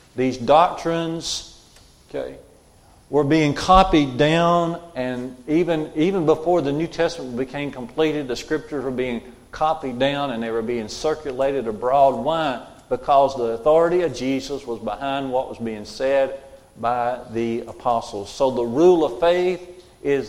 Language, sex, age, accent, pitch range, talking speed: English, male, 50-69, American, 130-160 Hz, 145 wpm